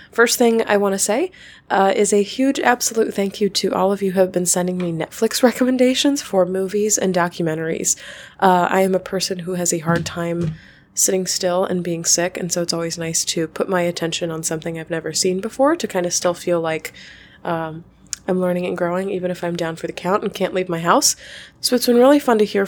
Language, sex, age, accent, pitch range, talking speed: English, female, 20-39, American, 175-210 Hz, 235 wpm